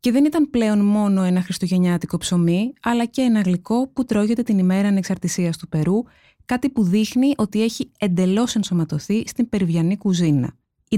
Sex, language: female, Greek